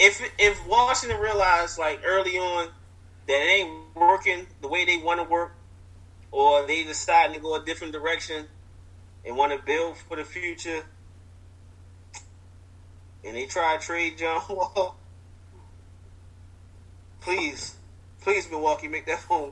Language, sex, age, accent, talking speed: English, male, 20-39, American, 140 wpm